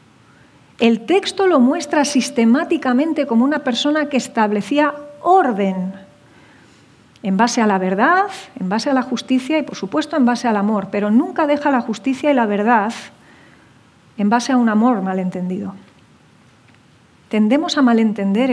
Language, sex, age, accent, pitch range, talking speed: English, female, 40-59, Spanish, 200-260 Hz, 145 wpm